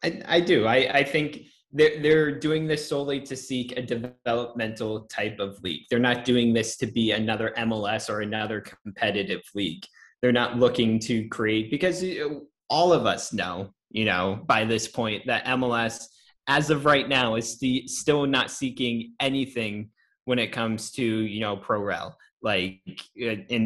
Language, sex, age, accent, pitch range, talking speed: English, male, 20-39, American, 110-130 Hz, 165 wpm